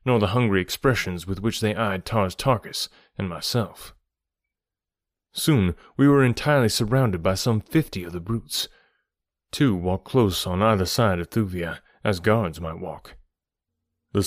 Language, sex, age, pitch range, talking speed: English, male, 30-49, 90-115 Hz, 150 wpm